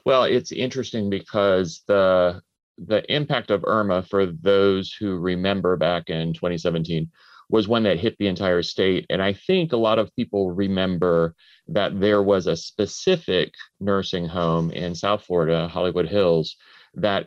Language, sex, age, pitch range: English, male, 30-49, 85-110 Hz